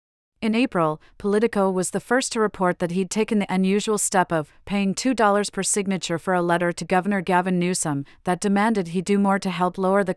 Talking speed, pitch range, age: 205 wpm, 170-200 Hz, 40-59